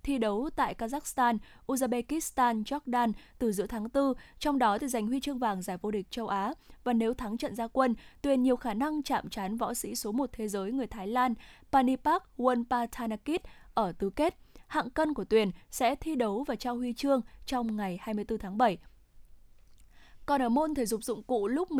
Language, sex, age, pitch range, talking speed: Vietnamese, female, 10-29, 220-285 Hz, 200 wpm